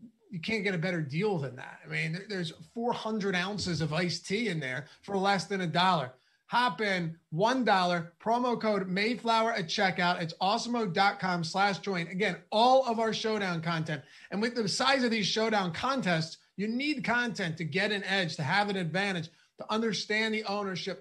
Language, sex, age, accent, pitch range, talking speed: English, male, 30-49, American, 170-205 Hz, 185 wpm